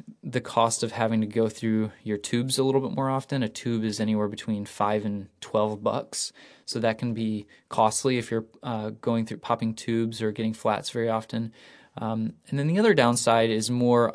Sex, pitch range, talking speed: male, 110-125 Hz, 205 wpm